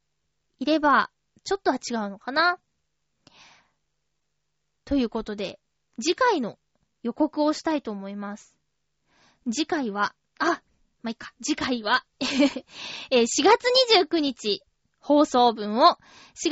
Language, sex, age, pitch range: Japanese, female, 20-39, 250-345 Hz